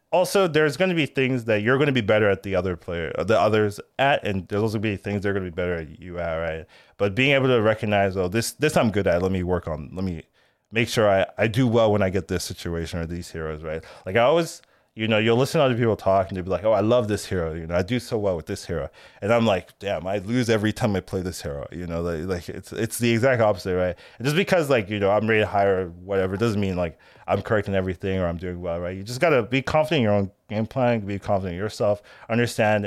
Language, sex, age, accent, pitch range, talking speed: English, male, 20-39, American, 95-115 Hz, 285 wpm